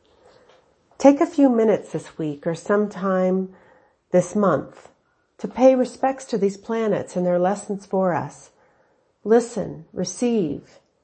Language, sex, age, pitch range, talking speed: English, female, 40-59, 180-245 Hz, 125 wpm